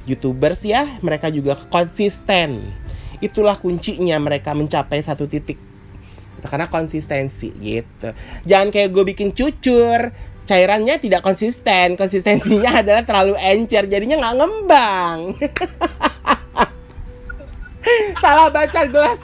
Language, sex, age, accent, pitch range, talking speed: Indonesian, male, 20-39, native, 145-215 Hz, 100 wpm